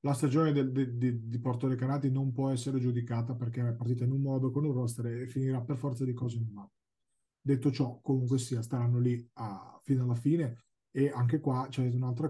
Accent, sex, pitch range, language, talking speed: native, male, 125-160 Hz, Italian, 225 wpm